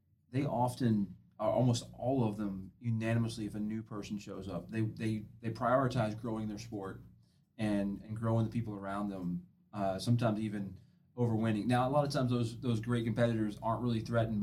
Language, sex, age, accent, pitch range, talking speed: English, male, 30-49, American, 105-115 Hz, 185 wpm